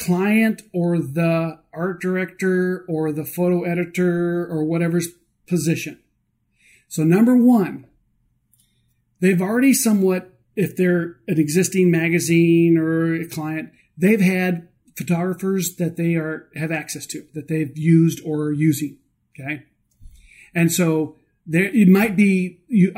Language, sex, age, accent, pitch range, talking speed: English, male, 40-59, American, 155-185 Hz, 130 wpm